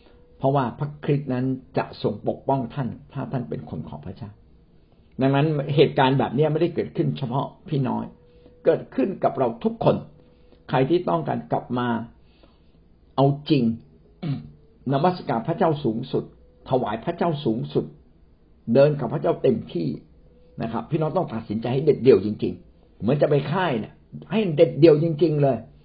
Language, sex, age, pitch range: Thai, male, 60-79, 110-180 Hz